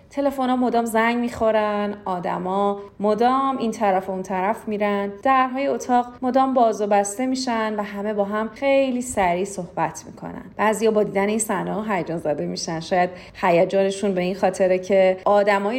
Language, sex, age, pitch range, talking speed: Persian, female, 30-49, 185-235 Hz, 160 wpm